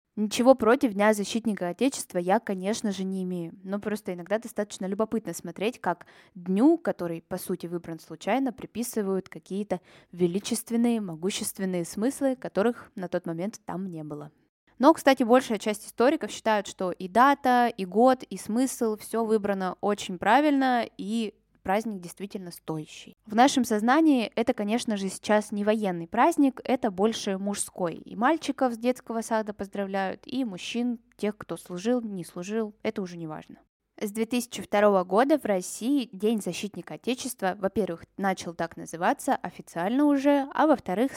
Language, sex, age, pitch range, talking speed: Russian, female, 20-39, 185-235 Hz, 150 wpm